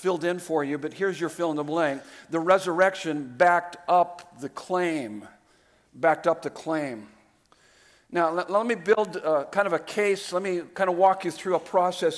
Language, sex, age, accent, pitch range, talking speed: English, male, 50-69, American, 165-200 Hz, 190 wpm